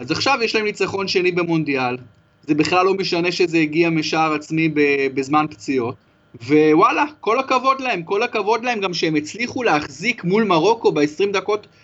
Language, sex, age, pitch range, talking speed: Hebrew, male, 30-49, 140-185 Hz, 160 wpm